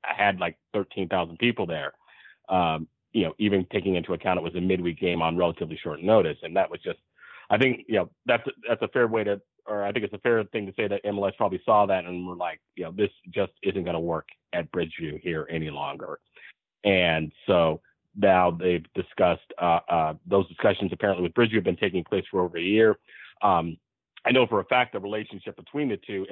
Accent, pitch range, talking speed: American, 85-100 Hz, 220 wpm